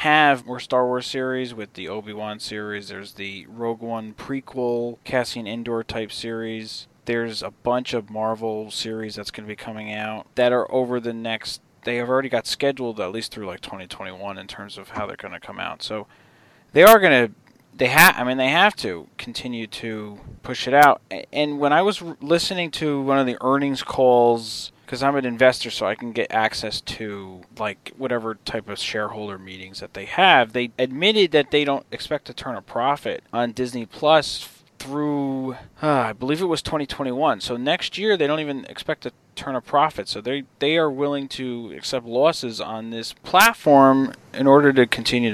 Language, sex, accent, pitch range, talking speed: English, male, American, 110-135 Hz, 195 wpm